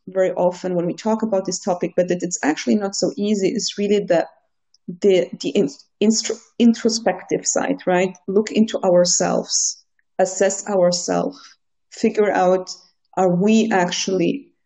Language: English